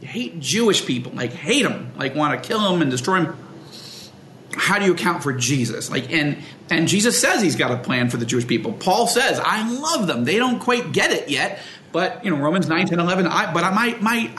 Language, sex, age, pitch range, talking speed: English, male, 40-59, 150-210 Hz, 235 wpm